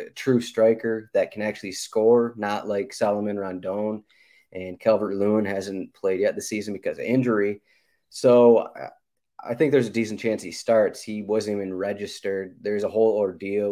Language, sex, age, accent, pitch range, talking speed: English, male, 20-39, American, 100-120 Hz, 160 wpm